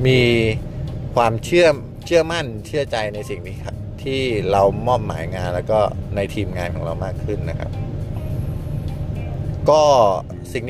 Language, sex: Thai, male